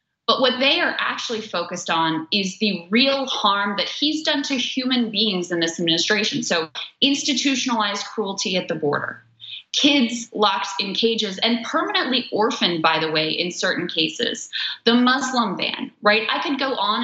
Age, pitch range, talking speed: 20-39, 180-245 Hz, 165 wpm